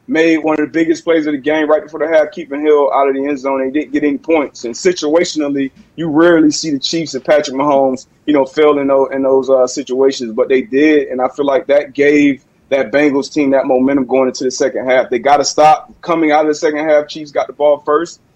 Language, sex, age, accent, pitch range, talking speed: English, male, 30-49, American, 135-155 Hz, 255 wpm